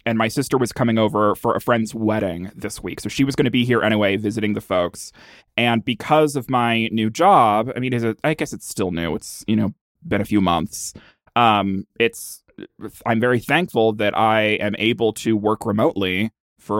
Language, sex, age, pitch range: English, male, 20-39, 105-120 Hz